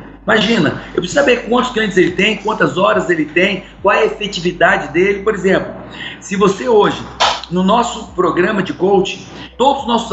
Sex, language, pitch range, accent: male, Portuguese, 180-230 Hz, Brazilian